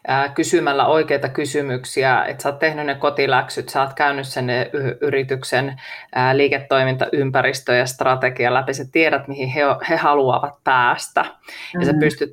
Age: 30-49